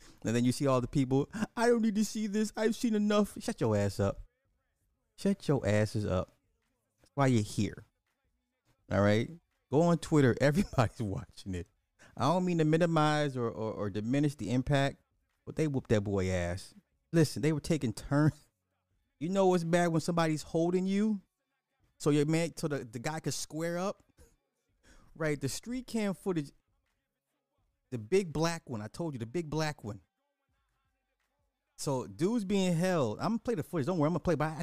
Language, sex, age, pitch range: English, male, 30-49, 115-170 Hz